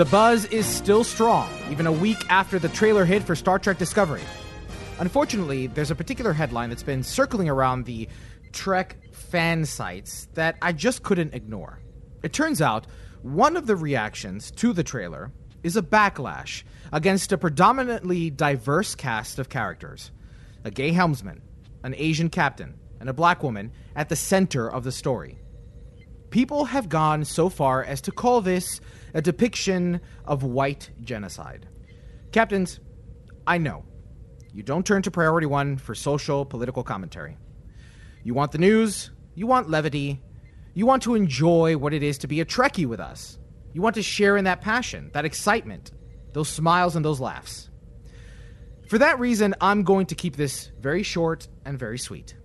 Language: English